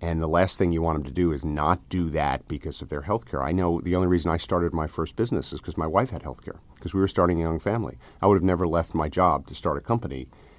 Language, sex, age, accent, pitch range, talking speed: English, male, 50-69, American, 75-95 Hz, 300 wpm